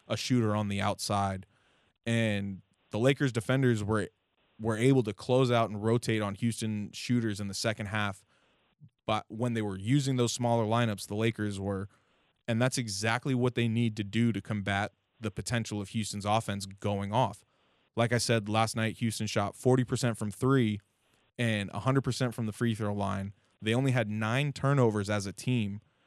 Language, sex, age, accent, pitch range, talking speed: English, male, 20-39, American, 105-125 Hz, 180 wpm